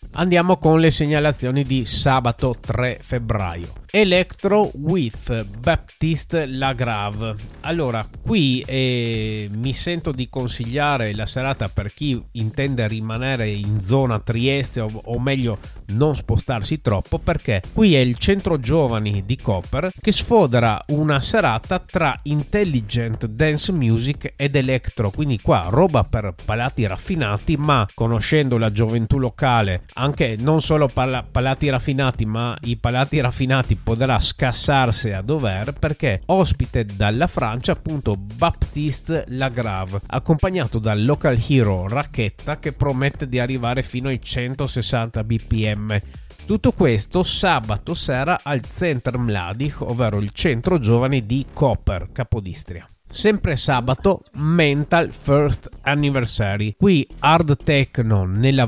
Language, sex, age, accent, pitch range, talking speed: Italian, male, 30-49, native, 110-150 Hz, 125 wpm